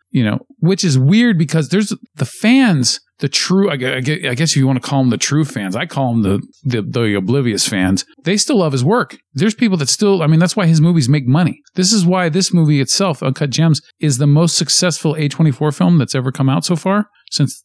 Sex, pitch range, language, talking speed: male, 130-180 Hz, English, 230 wpm